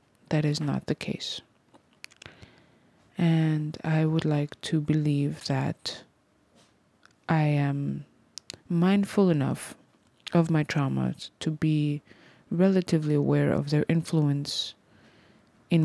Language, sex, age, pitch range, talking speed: English, female, 20-39, 145-185 Hz, 100 wpm